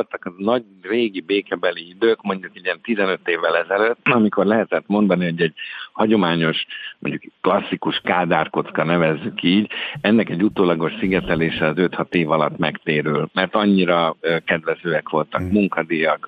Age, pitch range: 50-69, 85-105 Hz